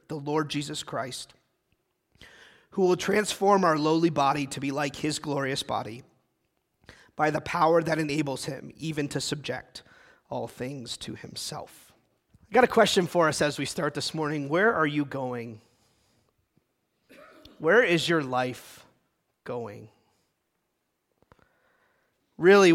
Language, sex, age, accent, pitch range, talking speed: English, male, 30-49, American, 130-180 Hz, 130 wpm